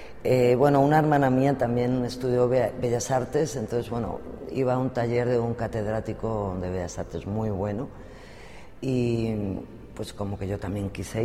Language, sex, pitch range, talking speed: English, female, 110-130 Hz, 160 wpm